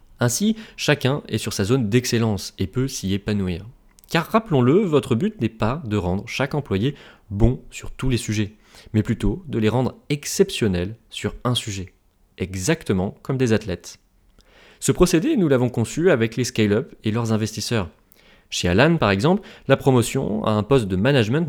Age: 30-49